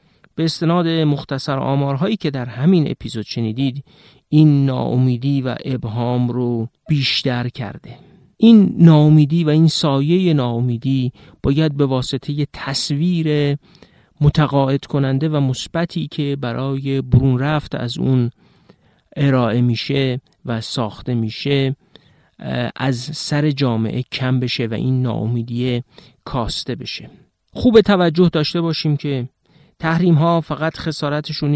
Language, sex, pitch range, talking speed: Persian, male, 125-155 Hz, 115 wpm